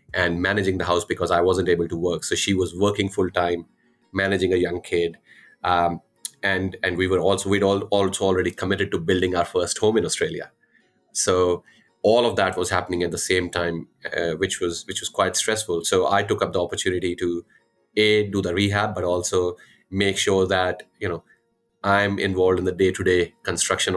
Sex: male